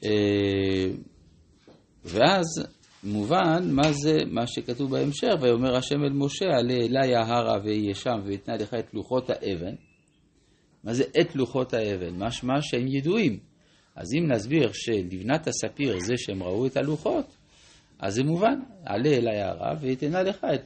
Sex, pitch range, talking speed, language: male, 105-140 Hz, 140 wpm, Hebrew